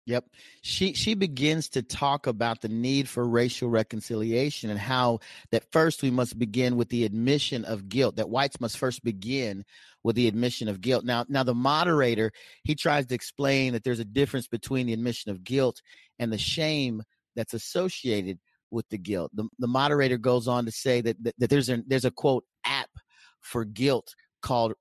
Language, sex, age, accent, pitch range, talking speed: English, male, 40-59, American, 115-140 Hz, 190 wpm